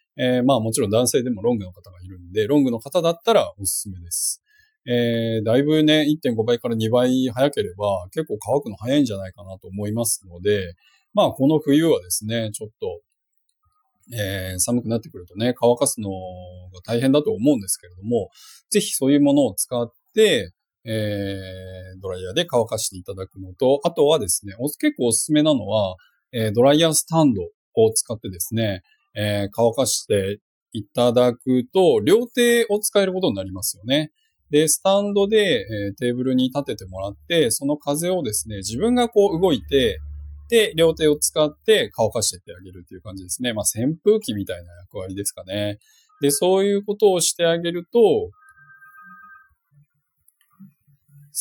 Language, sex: Japanese, male